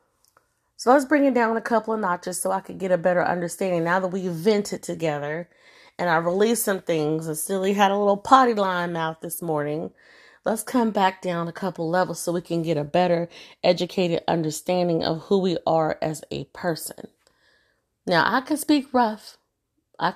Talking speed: 190 wpm